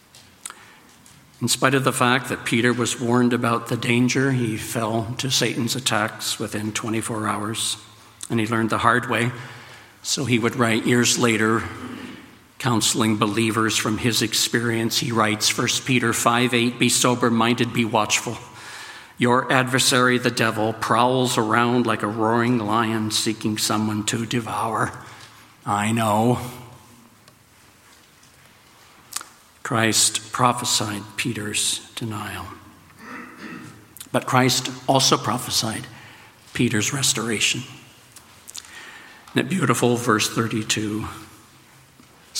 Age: 60-79